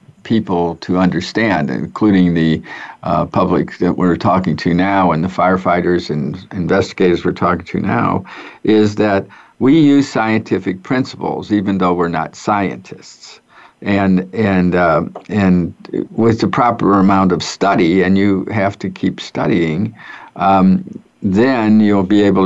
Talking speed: 140 wpm